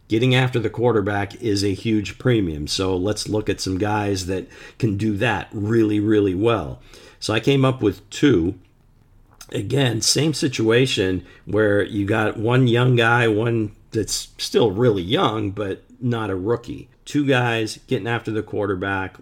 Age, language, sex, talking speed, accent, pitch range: 50-69, English, male, 160 wpm, American, 100-120 Hz